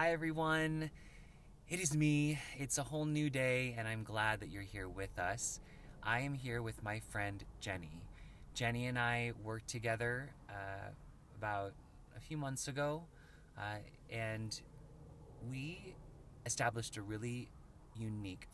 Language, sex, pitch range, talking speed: English, male, 95-130 Hz, 140 wpm